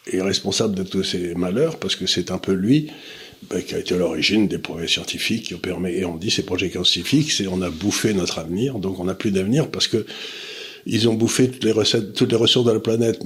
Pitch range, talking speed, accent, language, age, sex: 95-120 Hz, 250 wpm, French, French, 60-79, male